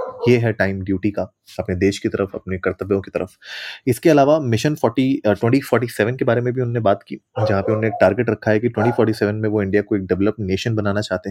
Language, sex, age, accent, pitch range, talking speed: Hindi, male, 30-49, native, 100-115 Hz, 235 wpm